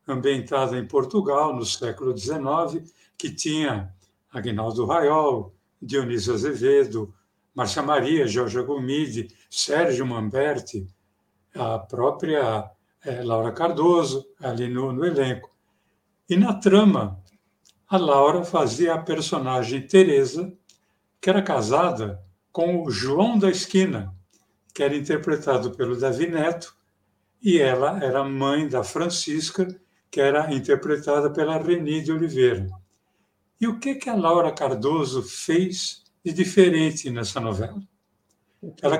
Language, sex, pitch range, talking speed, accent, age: Portuguese, male, 125-185 Hz, 115 wpm, Brazilian, 60-79